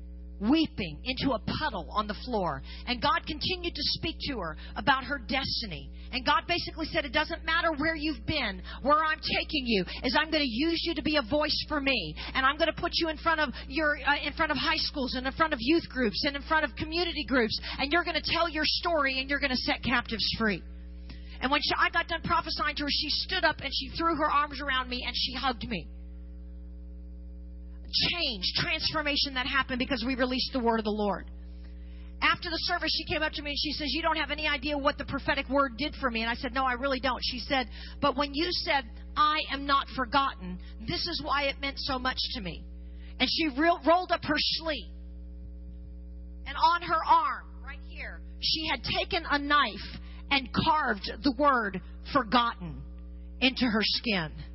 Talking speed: 210 wpm